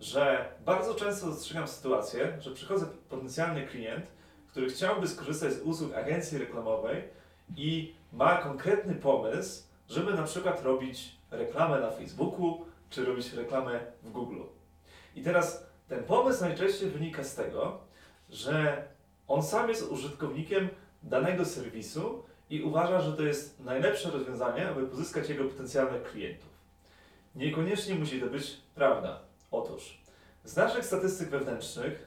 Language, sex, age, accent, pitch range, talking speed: Polish, male, 30-49, native, 130-175 Hz, 130 wpm